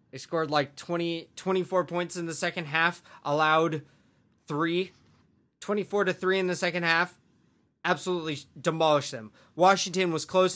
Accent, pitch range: American, 135-170 Hz